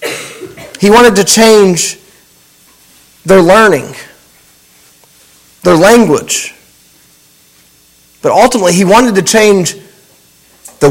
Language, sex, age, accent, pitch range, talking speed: English, male, 30-49, American, 160-225 Hz, 85 wpm